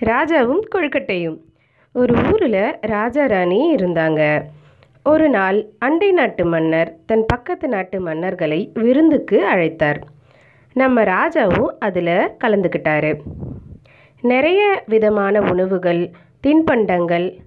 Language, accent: Tamil, native